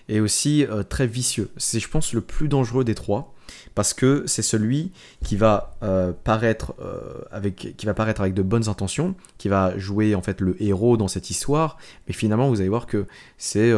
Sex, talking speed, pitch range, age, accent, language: male, 185 wpm, 100-120 Hz, 20-39, French, French